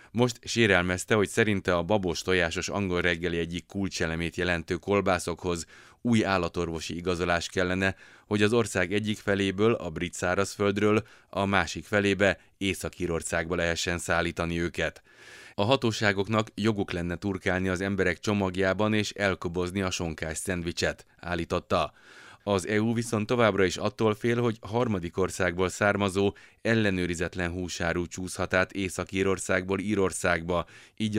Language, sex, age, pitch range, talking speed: Hungarian, male, 30-49, 90-105 Hz, 125 wpm